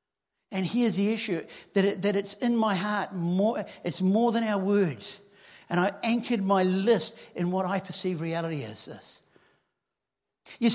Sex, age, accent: male, 60-79, Australian